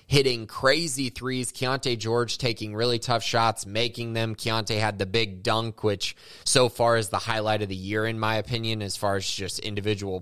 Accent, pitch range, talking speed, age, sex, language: American, 105-135 Hz, 195 wpm, 20-39, male, English